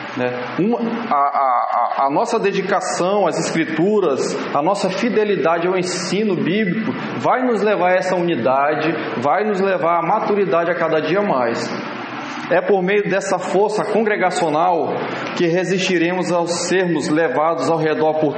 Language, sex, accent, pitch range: Portuguese, male, Brazilian, 165-200 Hz